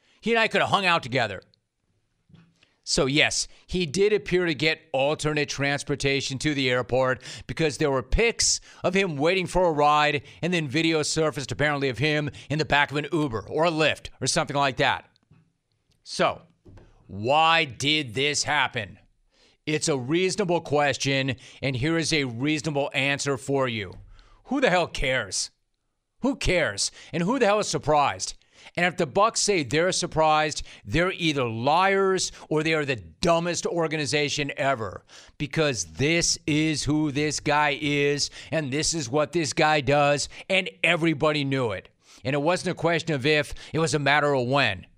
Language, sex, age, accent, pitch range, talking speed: English, male, 40-59, American, 140-170 Hz, 170 wpm